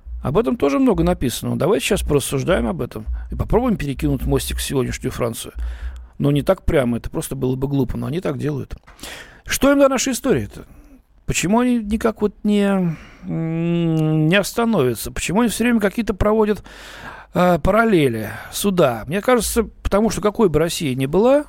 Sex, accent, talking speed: male, native, 175 wpm